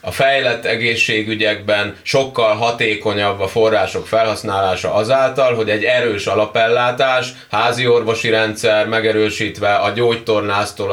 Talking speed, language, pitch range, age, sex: 105 wpm, Hungarian, 110-125 Hz, 30-49, male